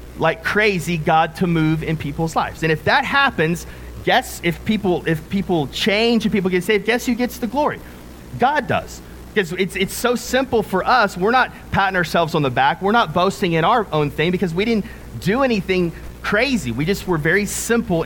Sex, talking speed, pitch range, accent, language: male, 205 wpm, 150-195 Hz, American, English